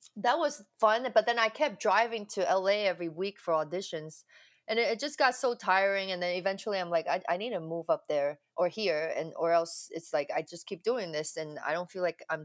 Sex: female